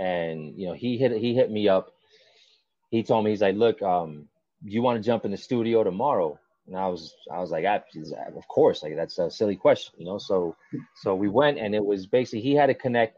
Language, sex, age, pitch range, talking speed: English, male, 30-49, 95-115 Hz, 235 wpm